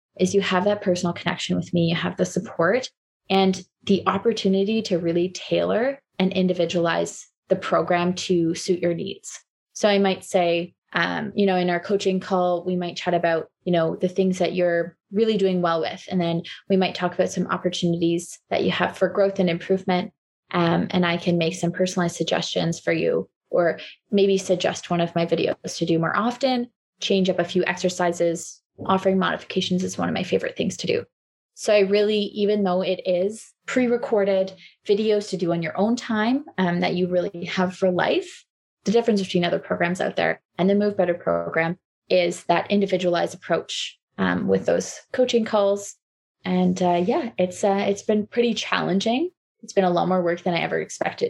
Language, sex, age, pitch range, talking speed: English, female, 20-39, 175-200 Hz, 190 wpm